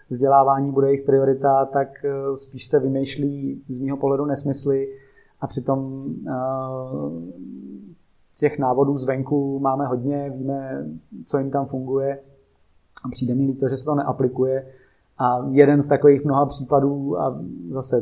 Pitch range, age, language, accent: 130-135 Hz, 30-49, Czech, native